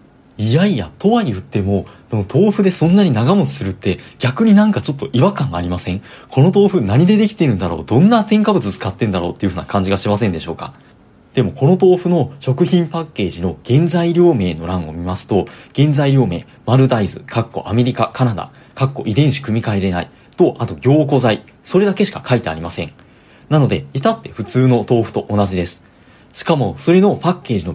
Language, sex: Japanese, male